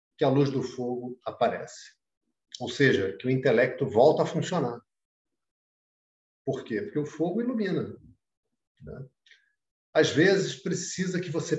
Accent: Brazilian